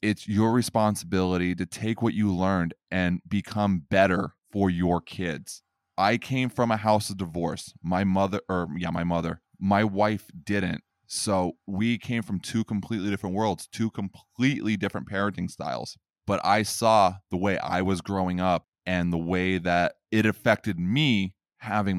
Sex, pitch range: male, 90-105 Hz